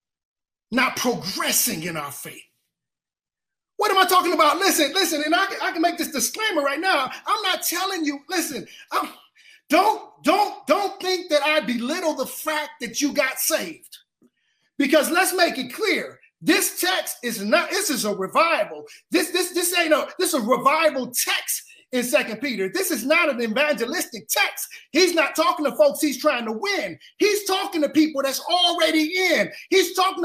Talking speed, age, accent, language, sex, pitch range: 180 wpm, 30-49, American, English, male, 265-335 Hz